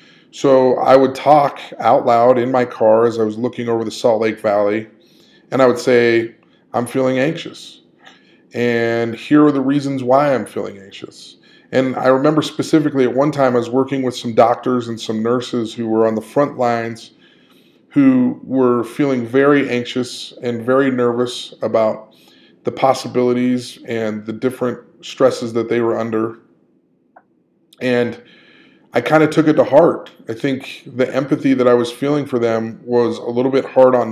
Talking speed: 175 wpm